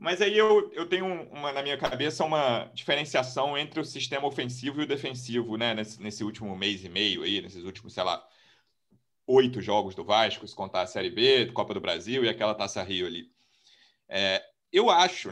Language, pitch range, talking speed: Portuguese, 120-175 Hz, 195 wpm